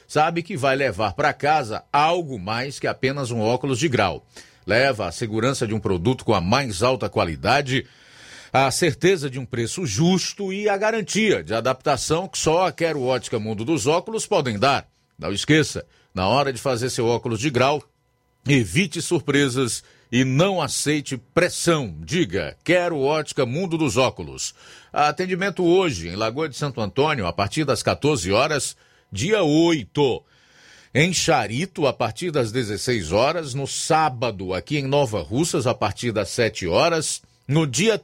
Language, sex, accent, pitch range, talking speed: Portuguese, male, Brazilian, 120-170 Hz, 160 wpm